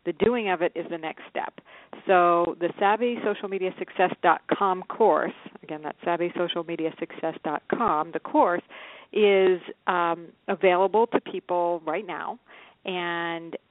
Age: 40-59